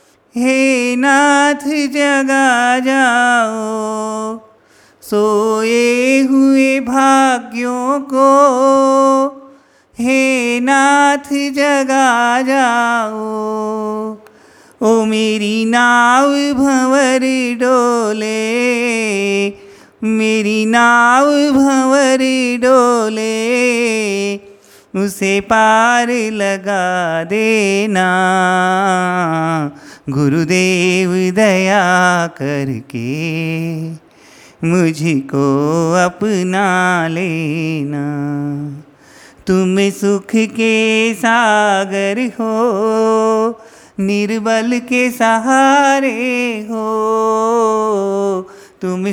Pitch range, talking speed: 200-245 Hz, 50 wpm